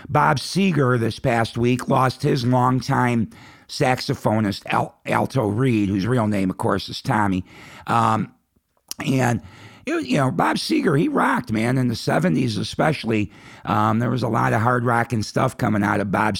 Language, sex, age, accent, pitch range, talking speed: English, male, 50-69, American, 100-125 Hz, 165 wpm